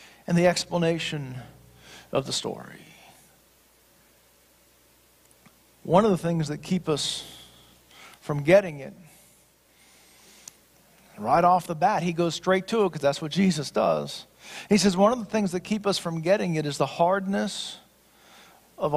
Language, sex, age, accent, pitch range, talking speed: English, male, 40-59, American, 170-220 Hz, 145 wpm